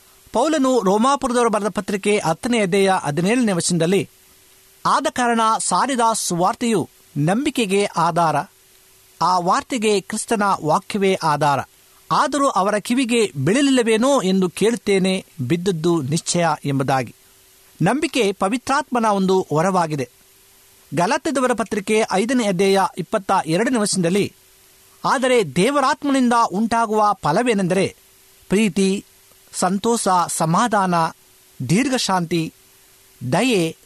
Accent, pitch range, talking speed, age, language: native, 165-235 Hz, 85 wpm, 50-69, Kannada